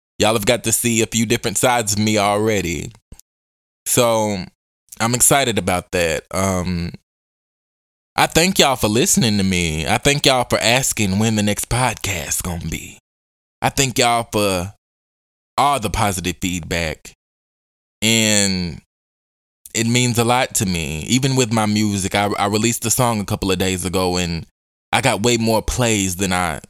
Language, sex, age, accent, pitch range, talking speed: English, male, 20-39, American, 85-105 Hz, 165 wpm